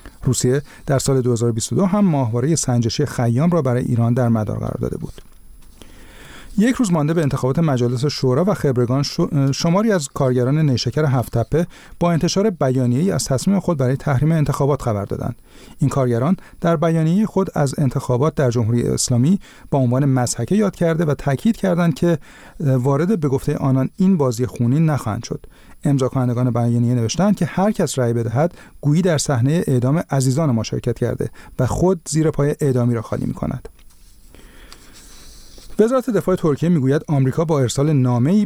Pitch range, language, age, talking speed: 125-165 Hz, Persian, 40-59, 160 wpm